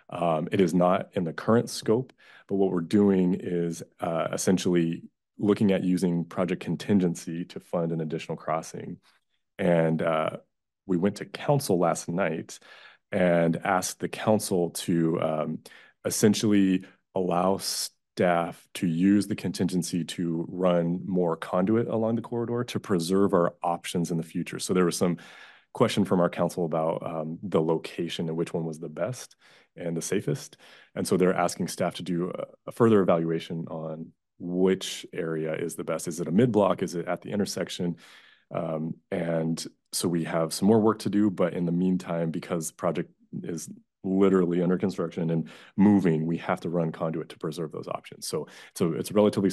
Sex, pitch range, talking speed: male, 85-95 Hz, 175 wpm